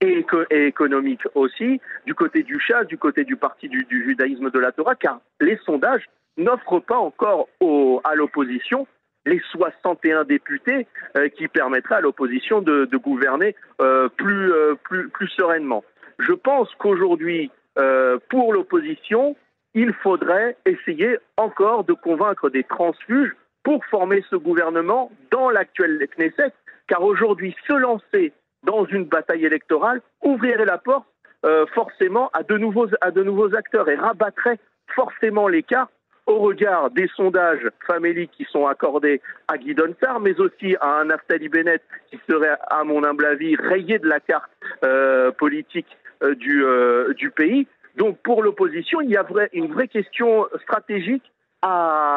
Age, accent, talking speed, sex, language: 50-69, French, 155 wpm, male, French